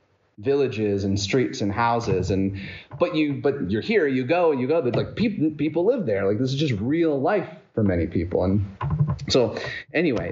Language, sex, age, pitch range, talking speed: English, male, 30-49, 110-145 Hz, 190 wpm